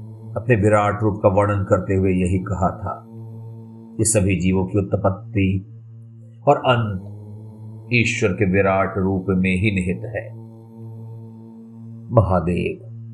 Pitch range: 95-115 Hz